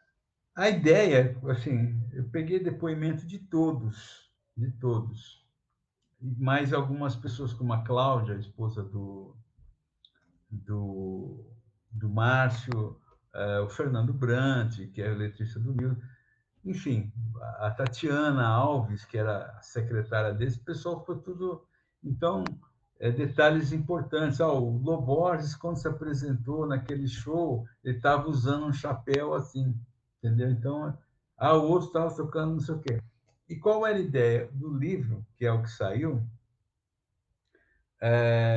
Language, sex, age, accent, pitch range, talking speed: Portuguese, male, 60-79, Brazilian, 115-155 Hz, 135 wpm